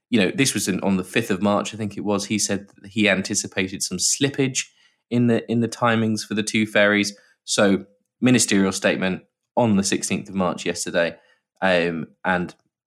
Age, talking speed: 20-39, 185 wpm